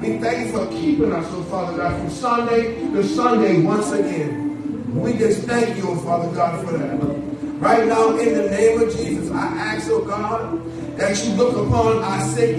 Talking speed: 200 wpm